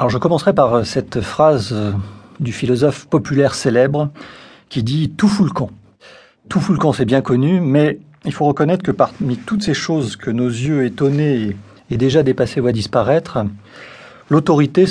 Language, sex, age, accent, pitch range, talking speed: French, male, 40-59, French, 120-165 Hz, 175 wpm